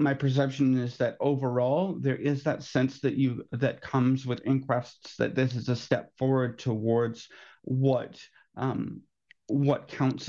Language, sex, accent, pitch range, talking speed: English, male, American, 130-160 Hz, 150 wpm